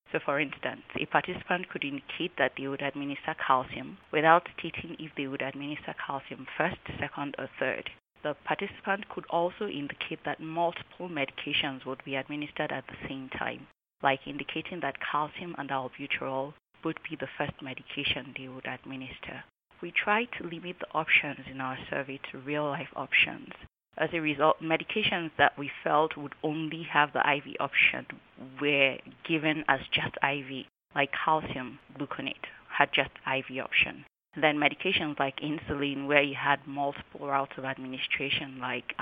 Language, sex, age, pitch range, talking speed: English, female, 20-39, 135-160 Hz, 155 wpm